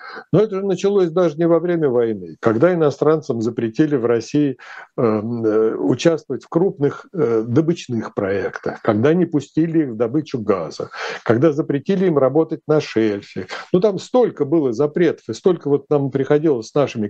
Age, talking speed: 60-79, 155 wpm